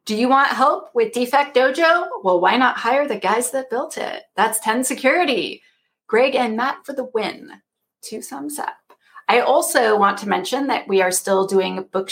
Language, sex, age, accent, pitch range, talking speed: English, female, 30-49, American, 195-265 Hz, 195 wpm